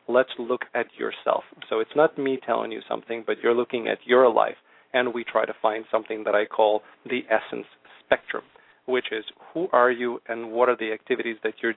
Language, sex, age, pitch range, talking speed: English, male, 40-59, 110-125 Hz, 210 wpm